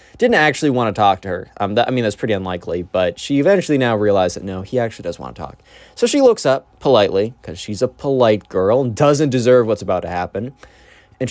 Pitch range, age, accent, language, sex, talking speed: 100-150 Hz, 20-39, American, English, male, 235 wpm